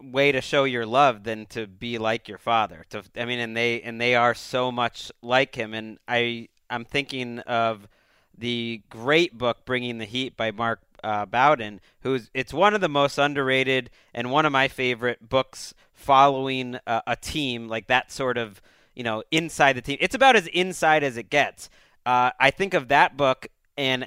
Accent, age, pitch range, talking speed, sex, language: American, 30-49, 120-165 Hz, 195 wpm, male, English